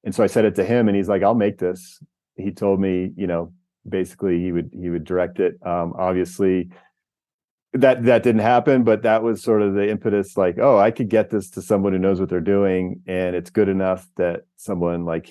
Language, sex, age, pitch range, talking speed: English, male, 40-59, 90-105 Hz, 225 wpm